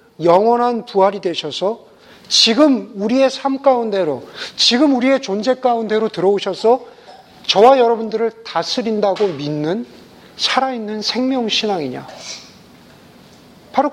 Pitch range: 195-255 Hz